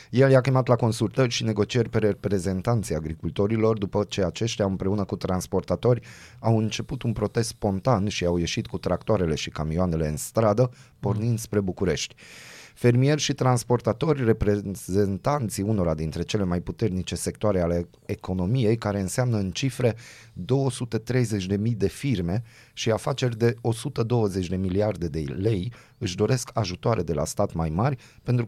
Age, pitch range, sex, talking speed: 30-49, 95-120 Hz, male, 145 wpm